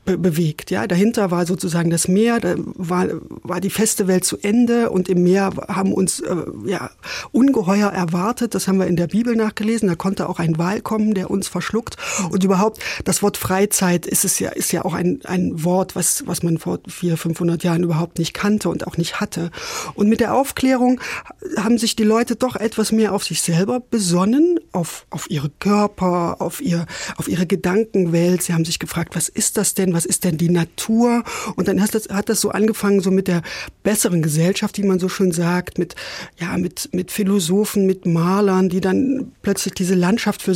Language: German